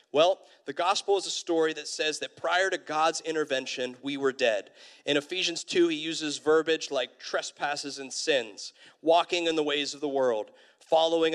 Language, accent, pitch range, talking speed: English, American, 130-160 Hz, 180 wpm